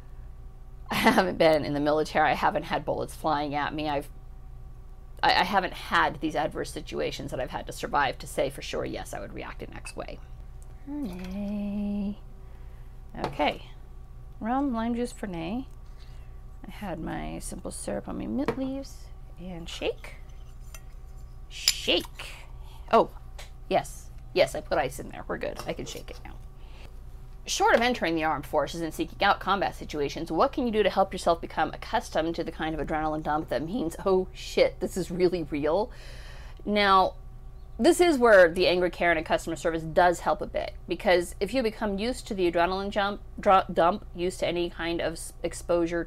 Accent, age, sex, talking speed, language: American, 30-49, female, 175 wpm, English